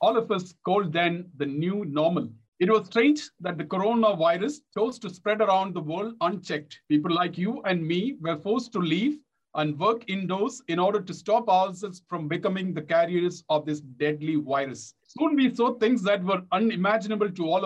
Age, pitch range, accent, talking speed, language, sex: 50-69, 175-225 Hz, Indian, 185 wpm, English, male